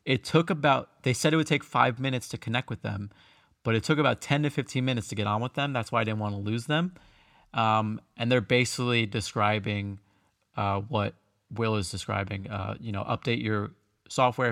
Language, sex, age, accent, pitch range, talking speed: English, male, 30-49, American, 105-130 Hz, 210 wpm